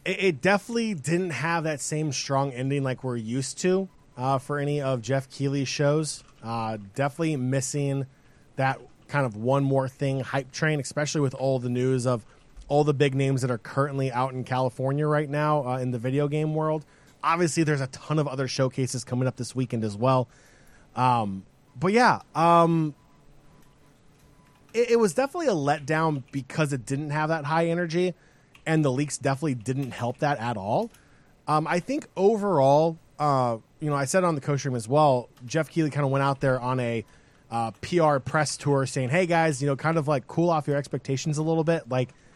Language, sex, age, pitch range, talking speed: English, male, 20-39, 130-155 Hz, 195 wpm